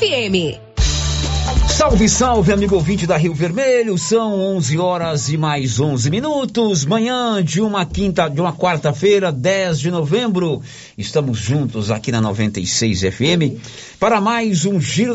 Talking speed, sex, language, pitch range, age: 135 wpm, male, Portuguese, 120-190 Hz, 50-69